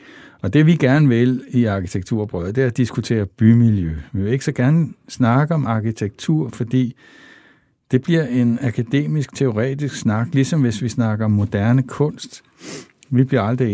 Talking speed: 160 wpm